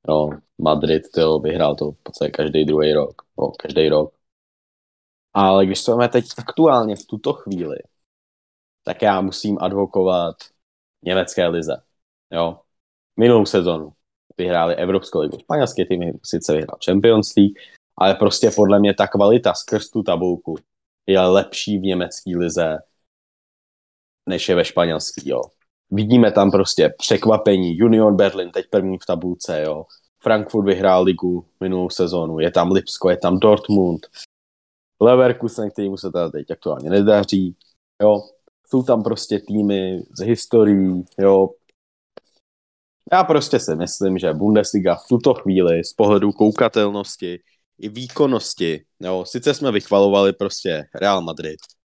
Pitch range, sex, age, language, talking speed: 85-105 Hz, male, 20-39, English, 130 wpm